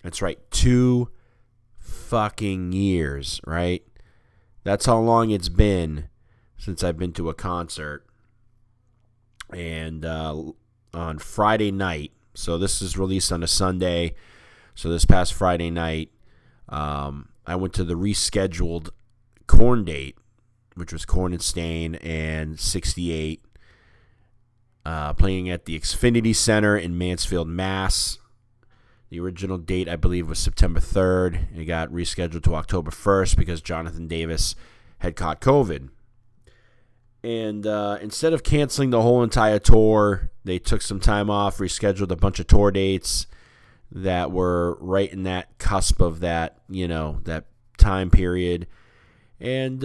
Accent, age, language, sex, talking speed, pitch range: American, 30-49, English, male, 135 wpm, 85-115 Hz